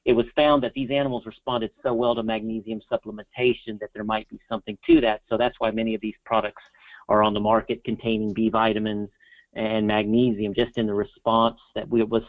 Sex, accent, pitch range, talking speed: male, American, 110-120 Hz, 200 wpm